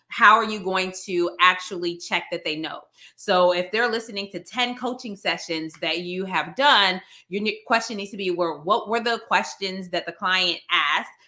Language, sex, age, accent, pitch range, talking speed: English, female, 20-39, American, 175-230 Hz, 190 wpm